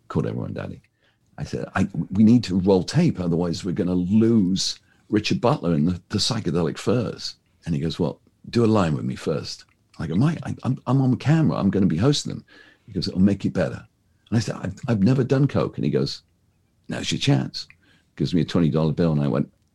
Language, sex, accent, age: English, male, British, 50-69